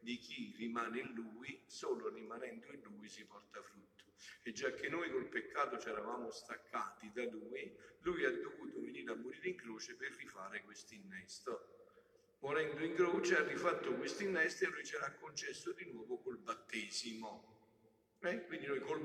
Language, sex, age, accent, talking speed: Italian, male, 50-69, native, 175 wpm